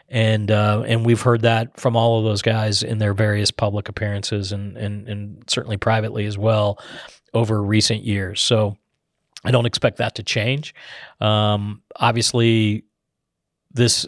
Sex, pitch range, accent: male, 105-120 Hz, American